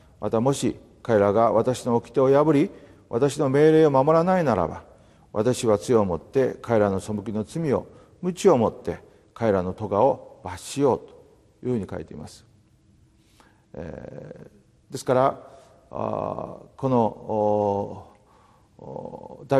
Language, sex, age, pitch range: Japanese, male, 40-59, 105-135 Hz